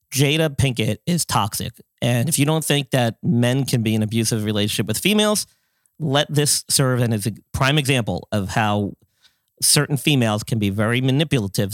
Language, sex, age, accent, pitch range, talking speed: English, male, 40-59, American, 105-135 Hz, 175 wpm